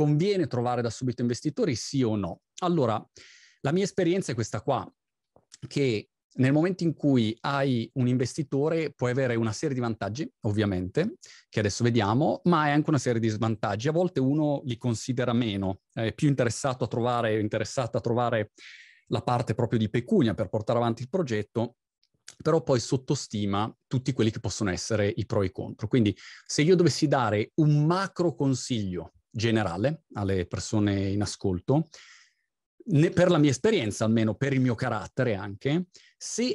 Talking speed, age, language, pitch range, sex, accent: 165 wpm, 30-49, Italian, 110-150 Hz, male, native